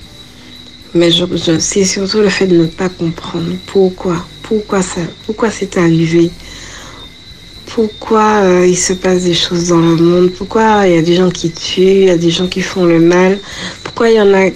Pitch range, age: 170-195 Hz, 60-79